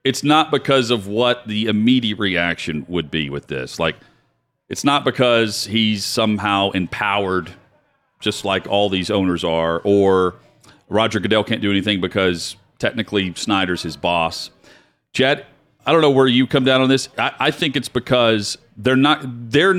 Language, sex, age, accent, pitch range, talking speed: English, male, 40-59, American, 100-130 Hz, 165 wpm